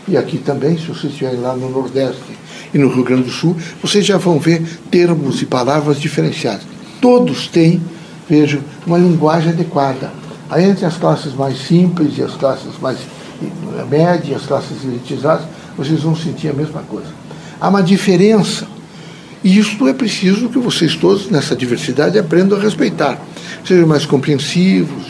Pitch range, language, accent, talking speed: 145-190 Hz, Portuguese, Brazilian, 160 wpm